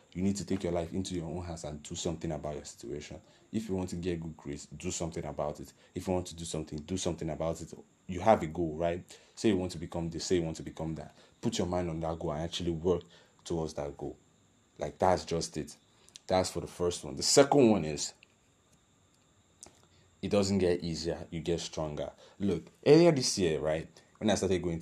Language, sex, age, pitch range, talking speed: English, male, 30-49, 80-95 Hz, 230 wpm